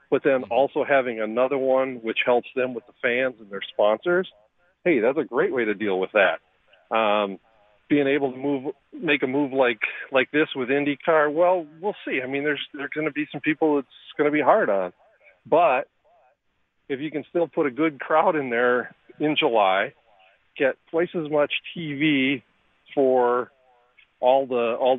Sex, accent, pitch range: male, American, 125-155 Hz